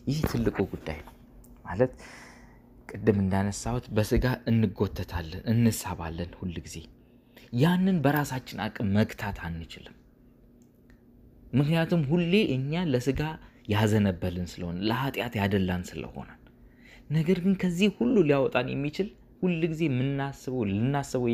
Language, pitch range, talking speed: Amharic, 105-160 Hz, 100 wpm